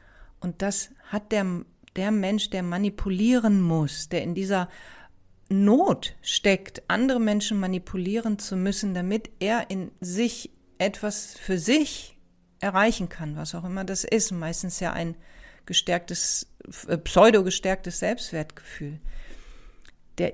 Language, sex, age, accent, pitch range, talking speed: German, female, 40-59, German, 155-215 Hz, 125 wpm